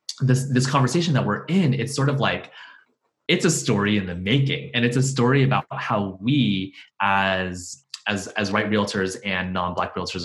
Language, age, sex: English, 20-39, male